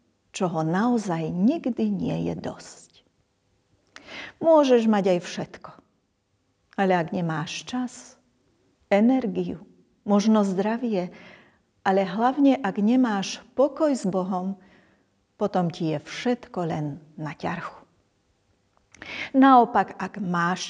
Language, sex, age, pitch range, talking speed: Slovak, female, 40-59, 185-235 Hz, 100 wpm